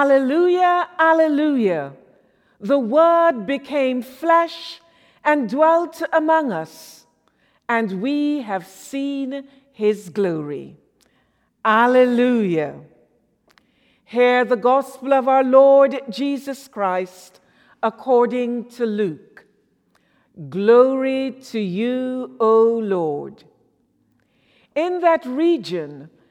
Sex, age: female, 50-69